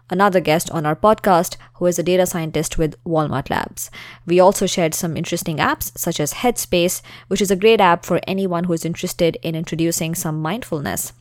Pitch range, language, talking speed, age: 160-195 Hz, English, 195 wpm, 20-39